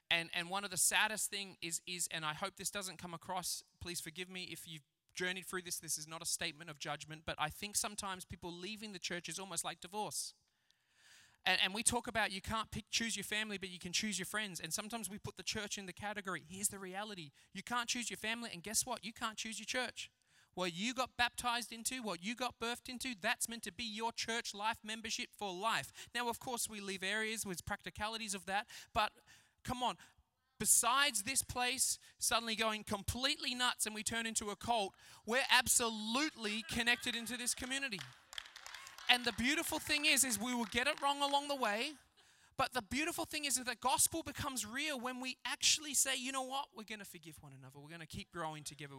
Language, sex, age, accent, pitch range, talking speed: English, male, 20-39, Australian, 175-240 Hz, 220 wpm